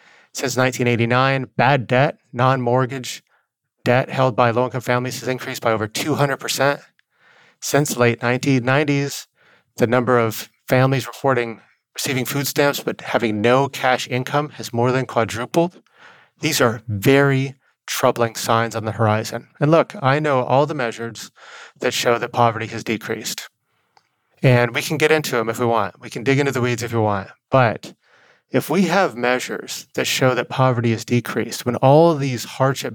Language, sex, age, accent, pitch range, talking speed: English, male, 30-49, American, 120-150 Hz, 165 wpm